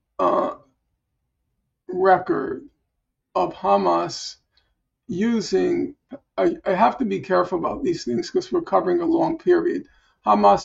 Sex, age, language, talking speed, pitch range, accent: male, 50-69, English, 120 wpm, 210-355 Hz, American